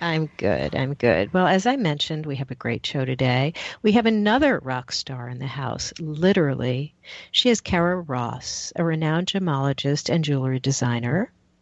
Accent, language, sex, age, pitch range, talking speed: American, English, female, 50-69, 130-175 Hz, 170 wpm